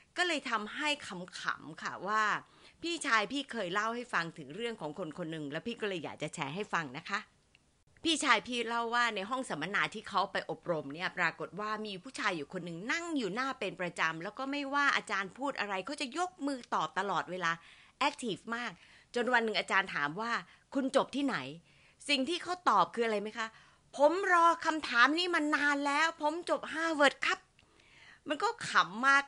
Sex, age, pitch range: female, 30-49, 185-275 Hz